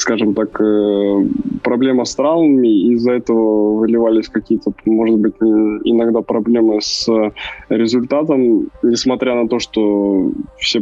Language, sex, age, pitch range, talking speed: Russian, male, 20-39, 110-125 Hz, 110 wpm